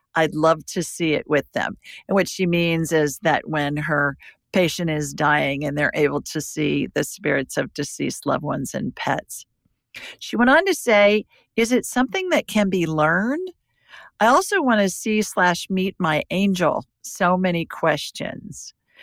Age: 50-69